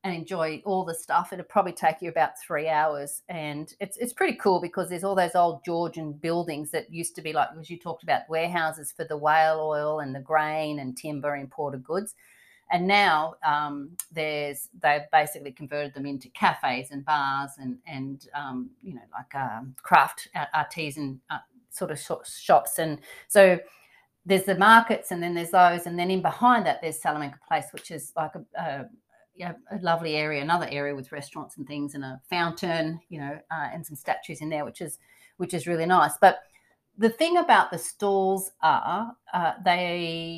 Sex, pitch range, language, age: female, 150-180 Hz, English, 40-59